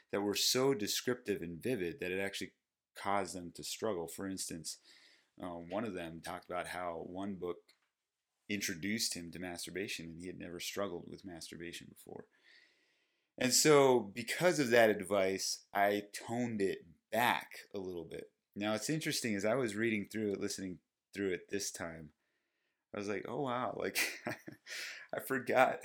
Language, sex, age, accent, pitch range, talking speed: English, male, 30-49, American, 90-110 Hz, 165 wpm